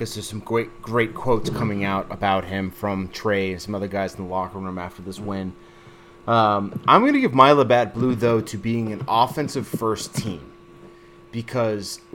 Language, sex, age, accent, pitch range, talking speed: English, male, 30-49, American, 100-135 Hz, 190 wpm